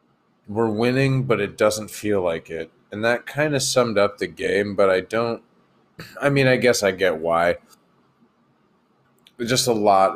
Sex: male